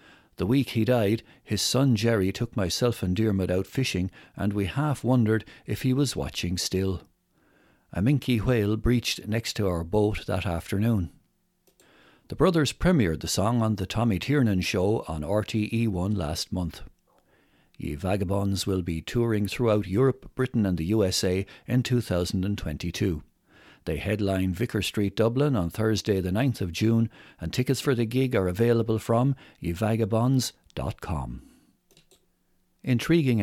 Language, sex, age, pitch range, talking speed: English, male, 60-79, 95-120 Hz, 145 wpm